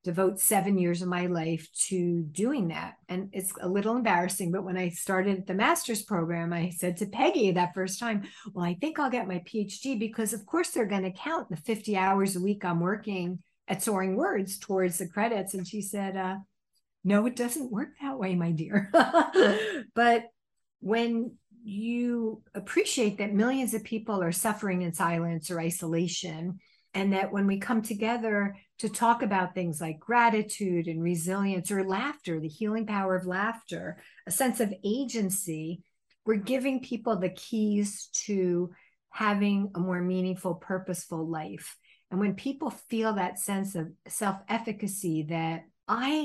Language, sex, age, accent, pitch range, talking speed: English, female, 50-69, American, 180-225 Hz, 165 wpm